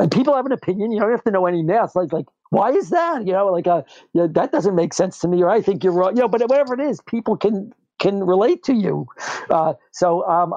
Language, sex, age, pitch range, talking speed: English, male, 50-69, 150-190 Hz, 280 wpm